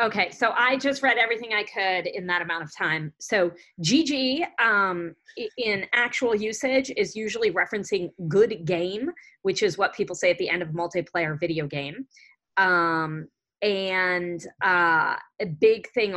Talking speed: 160 wpm